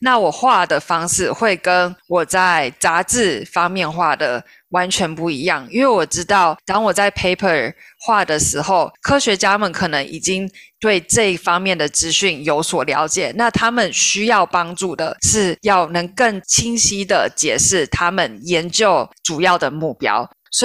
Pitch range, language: 170-215 Hz, Chinese